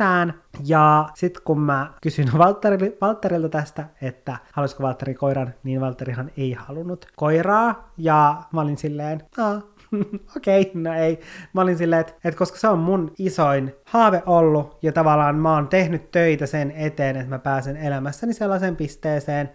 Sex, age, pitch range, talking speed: male, 20-39, 135-165 Hz, 165 wpm